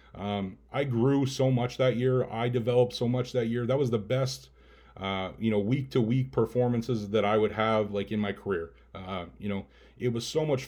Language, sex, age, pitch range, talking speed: English, male, 30-49, 105-125 Hz, 220 wpm